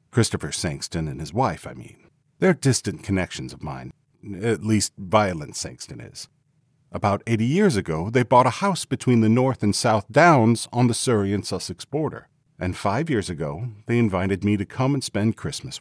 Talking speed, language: 185 wpm, English